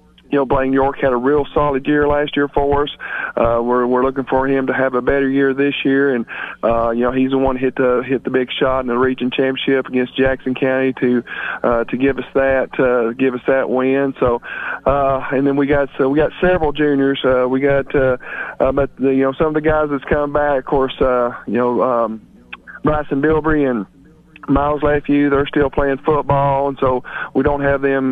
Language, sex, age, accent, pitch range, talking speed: English, male, 40-59, American, 130-145 Hz, 225 wpm